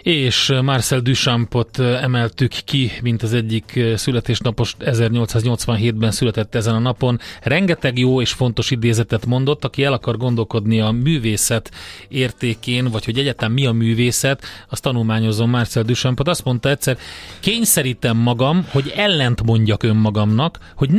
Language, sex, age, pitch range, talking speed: Hungarian, male, 30-49, 115-130 Hz, 135 wpm